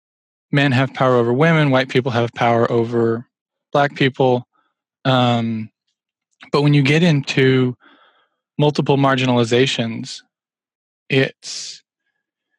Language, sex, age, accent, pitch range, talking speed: English, male, 20-39, American, 125-145 Hz, 100 wpm